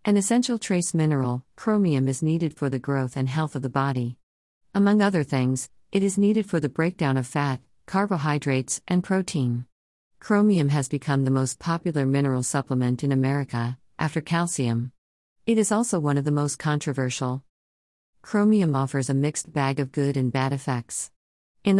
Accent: American